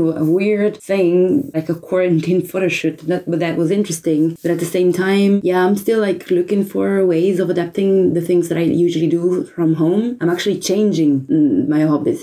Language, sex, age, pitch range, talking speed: Russian, female, 20-39, 160-200 Hz, 190 wpm